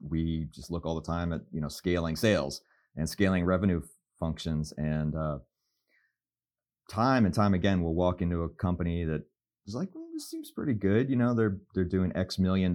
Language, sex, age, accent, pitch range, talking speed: English, male, 30-49, American, 80-95 Hz, 195 wpm